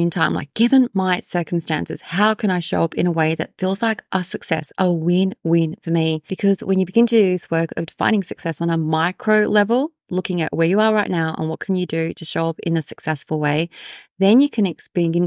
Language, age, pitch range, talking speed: English, 20-39, 160-205 Hz, 240 wpm